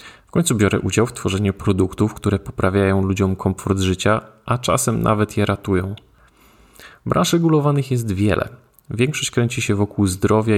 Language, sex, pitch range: Polish, male, 100-120 Hz